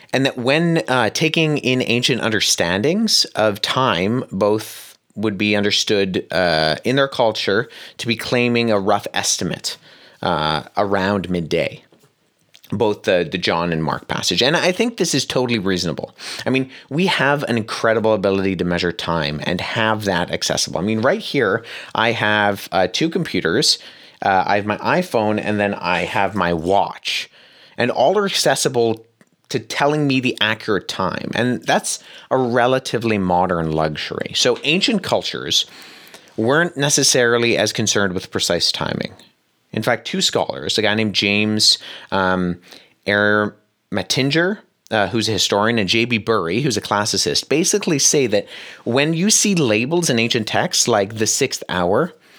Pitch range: 100-130 Hz